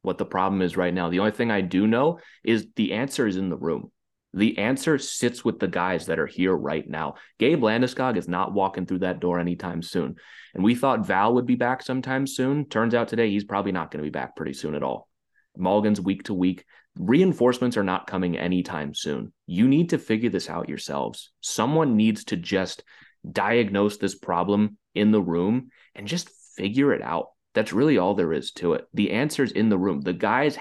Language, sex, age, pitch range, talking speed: English, male, 30-49, 95-125 Hz, 215 wpm